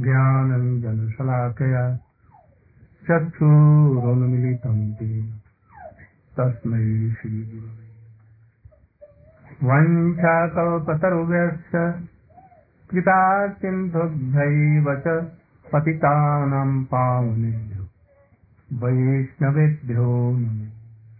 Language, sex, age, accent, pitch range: Hindi, male, 50-69, native, 120-145 Hz